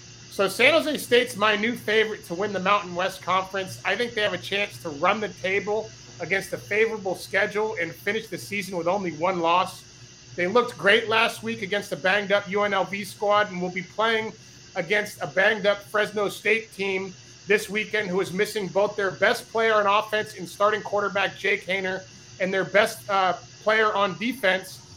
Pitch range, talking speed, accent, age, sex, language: 185-215 Hz, 185 wpm, American, 30-49, male, English